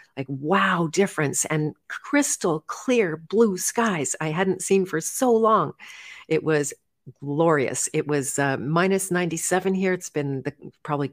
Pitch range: 140-185 Hz